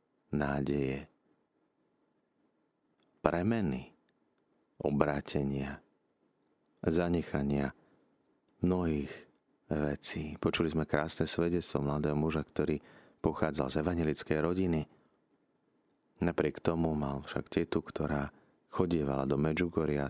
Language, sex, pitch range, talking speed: Slovak, male, 70-80 Hz, 80 wpm